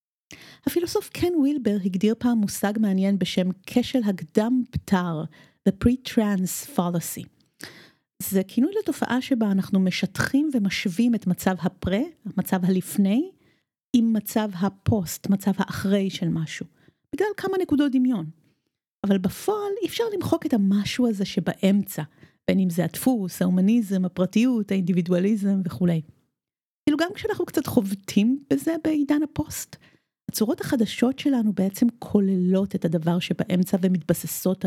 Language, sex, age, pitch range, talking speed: Hebrew, female, 30-49, 180-245 Hz, 125 wpm